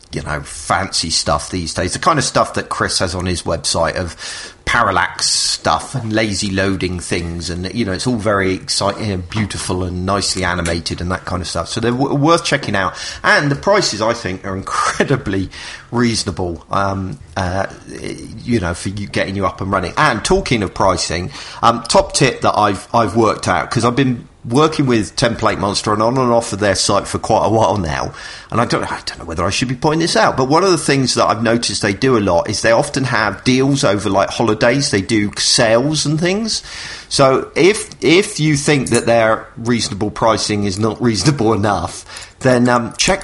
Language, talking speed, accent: English, 210 wpm, British